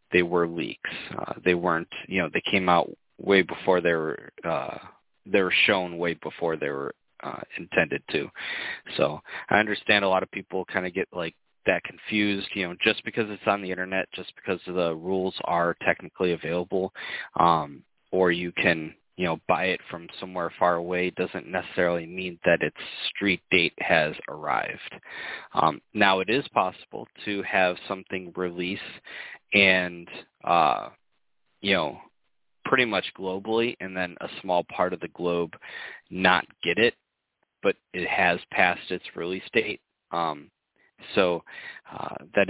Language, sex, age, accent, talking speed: English, male, 20-39, American, 160 wpm